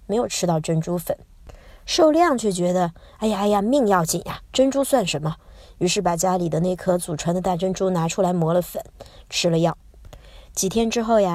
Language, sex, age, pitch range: Chinese, male, 20-39, 170-220 Hz